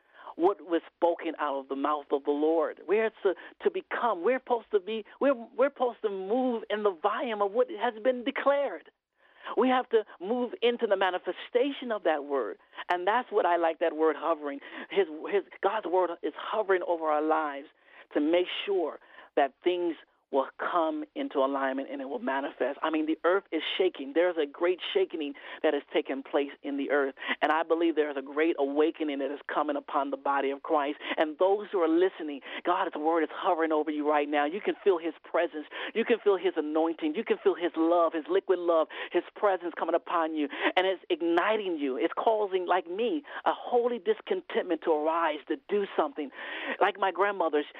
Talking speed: 200 wpm